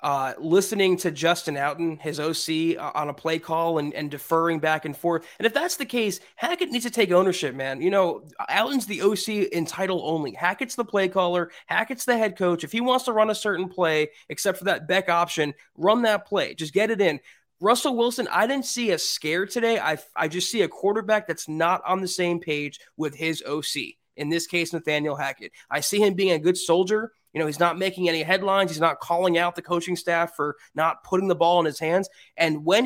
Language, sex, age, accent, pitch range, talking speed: English, male, 20-39, American, 160-210 Hz, 225 wpm